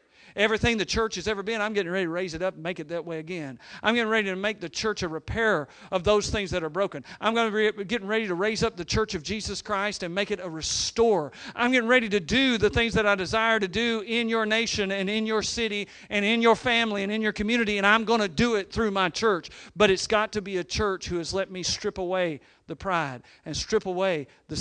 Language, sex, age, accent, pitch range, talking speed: English, male, 50-69, American, 180-220 Hz, 265 wpm